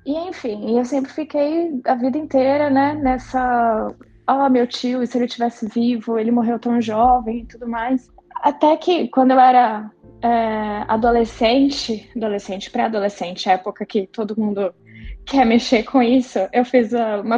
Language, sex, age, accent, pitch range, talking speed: Portuguese, female, 10-29, Brazilian, 210-255 Hz, 155 wpm